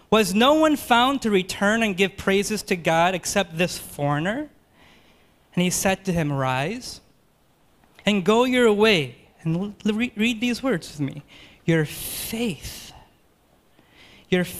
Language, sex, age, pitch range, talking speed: English, male, 20-39, 155-220 Hz, 135 wpm